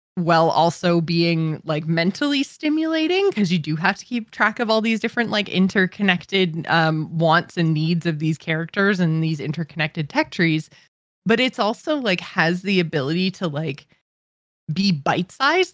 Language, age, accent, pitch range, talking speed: English, 20-39, American, 160-205 Hz, 160 wpm